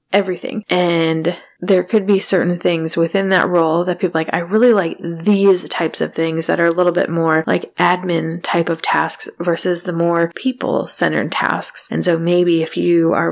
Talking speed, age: 190 wpm, 20-39